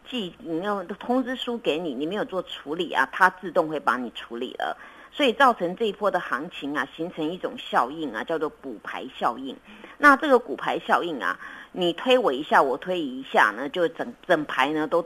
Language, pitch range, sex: Chinese, 170-245 Hz, female